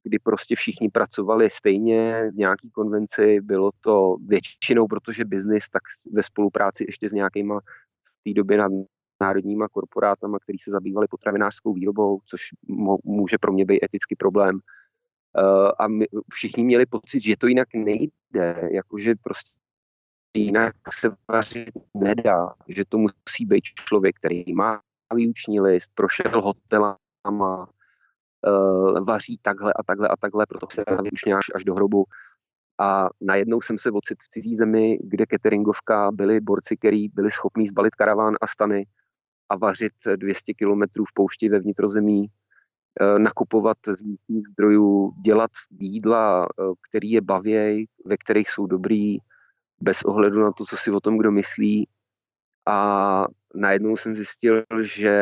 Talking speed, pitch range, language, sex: 140 wpm, 100-110 Hz, Czech, male